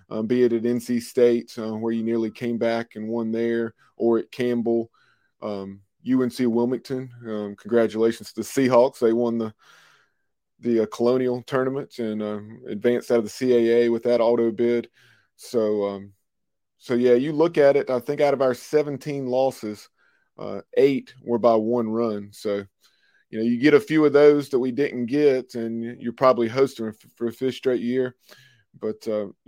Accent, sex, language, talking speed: American, male, English, 185 wpm